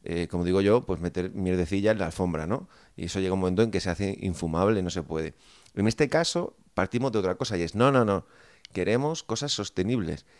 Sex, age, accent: male, 30-49, Spanish